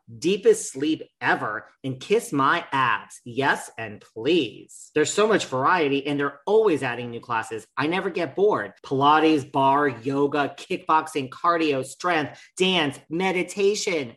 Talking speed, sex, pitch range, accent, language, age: 135 wpm, male, 125-165 Hz, American, English, 40-59